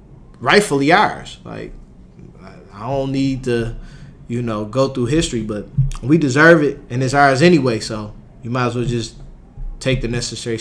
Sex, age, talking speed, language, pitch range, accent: male, 20-39, 165 wpm, English, 120-155 Hz, American